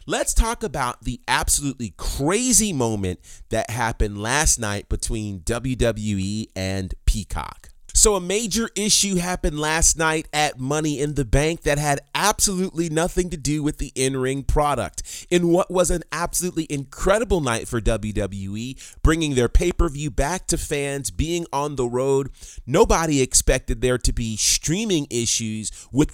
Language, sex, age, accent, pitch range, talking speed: English, male, 30-49, American, 110-155 Hz, 145 wpm